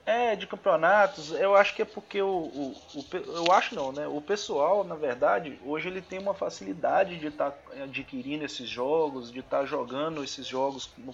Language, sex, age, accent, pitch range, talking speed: Portuguese, male, 30-49, Brazilian, 145-210 Hz, 200 wpm